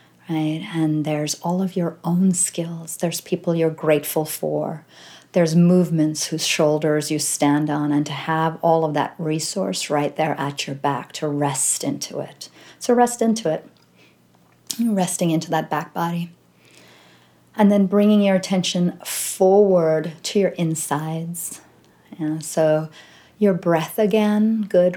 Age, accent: 40-59, American